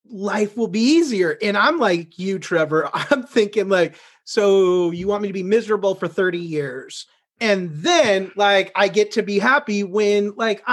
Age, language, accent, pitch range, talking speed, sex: 30-49, English, American, 170-245 Hz, 180 wpm, male